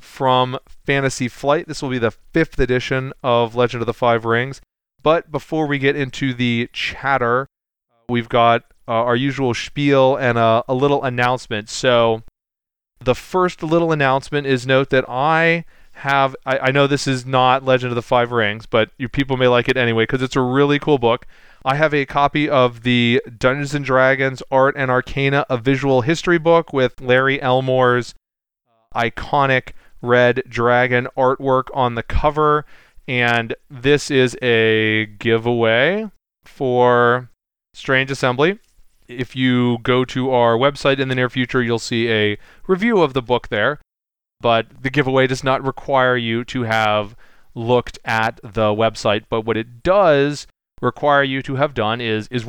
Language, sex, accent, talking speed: English, male, American, 160 wpm